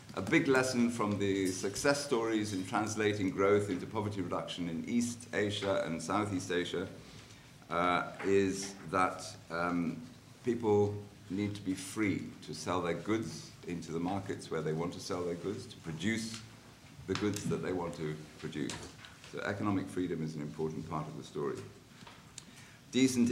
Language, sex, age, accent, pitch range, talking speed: English, male, 50-69, British, 95-115 Hz, 160 wpm